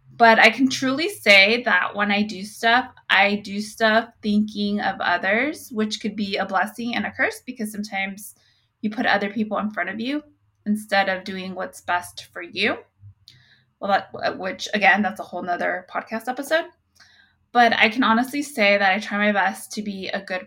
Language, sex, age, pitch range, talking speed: English, female, 20-39, 190-230 Hz, 190 wpm